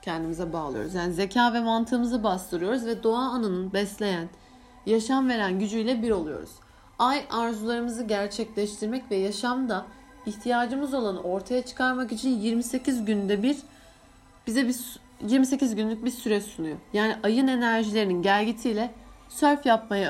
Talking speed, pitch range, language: 125 wpm, 200-250 Hz, Turkish